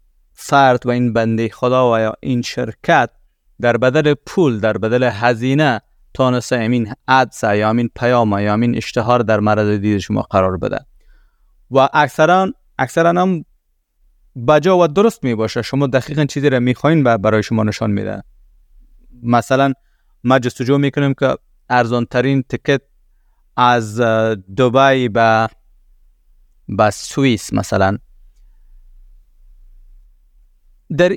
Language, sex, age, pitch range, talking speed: Persian, male, 30-49, 105-130 Hz, 130 wpm